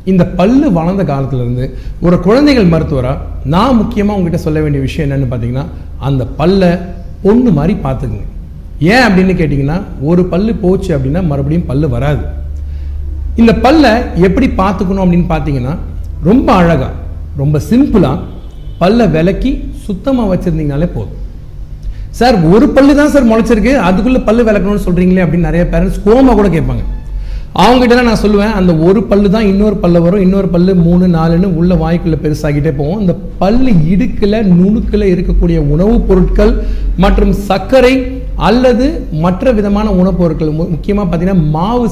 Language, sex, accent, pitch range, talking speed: Tamil, male, native, 155-205 Hz, 135 wpm